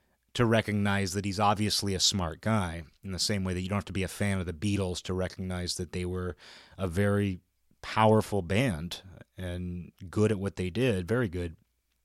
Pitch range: 90-115 Hz